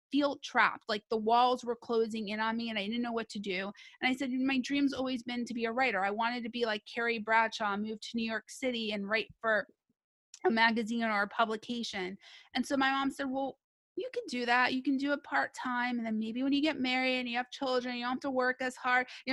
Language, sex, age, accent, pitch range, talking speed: English, female, 30-49, American, 225-255 Hz, 255 wpm